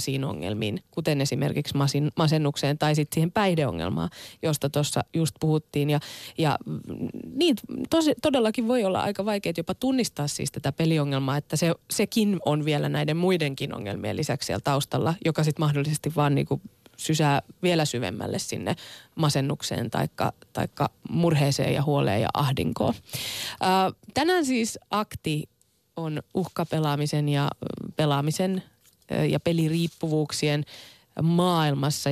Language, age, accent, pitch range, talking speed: Finnish, 20-39, native, 145-190 Hz, 120 wpm